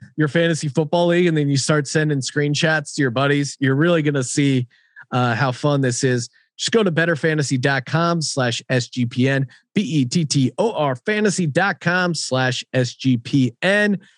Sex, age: male, 30-49